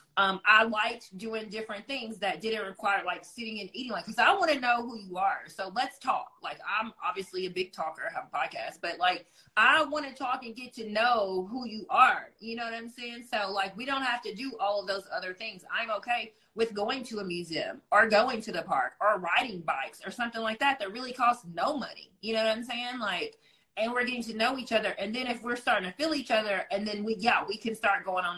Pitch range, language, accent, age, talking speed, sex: 195-255 Hz, English, American, 30-49, 255 wpm, female